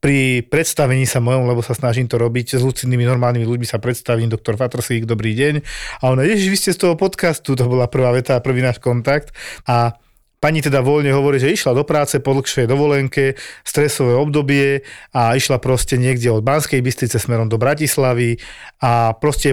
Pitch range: 120-140 Hz